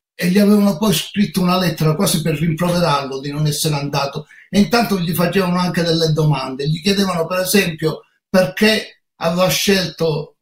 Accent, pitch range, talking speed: native, 150-185 Hz, 160 wpm